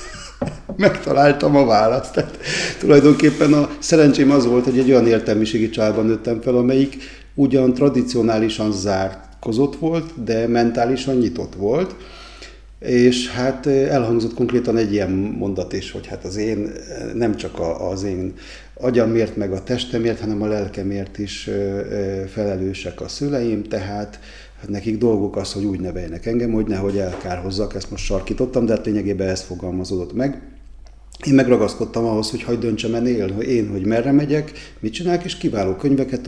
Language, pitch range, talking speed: Hungarian, 100-130 Hz, 145 wpm